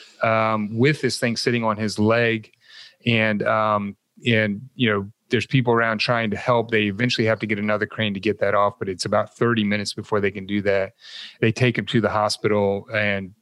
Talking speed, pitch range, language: 210 wpm, 110-130 Hz, English